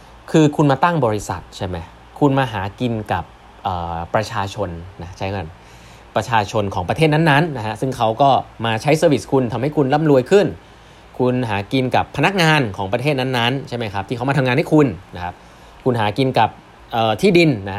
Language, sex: Thai, male